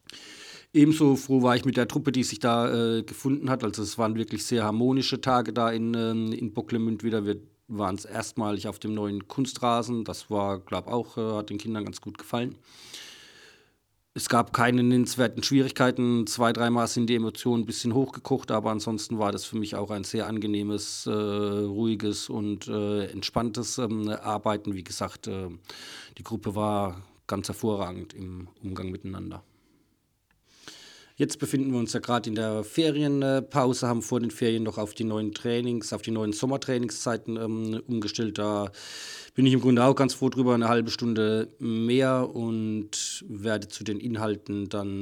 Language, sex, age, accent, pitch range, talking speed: German, male, 40-59, German, 105-120 Hz, 170 wpm